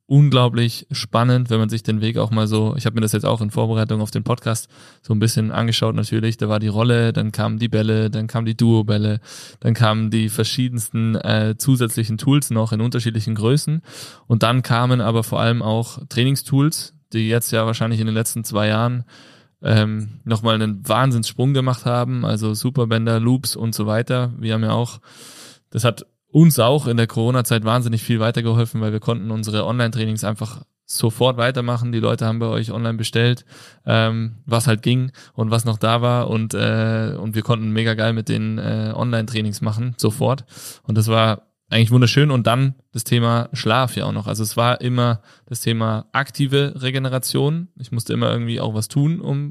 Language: German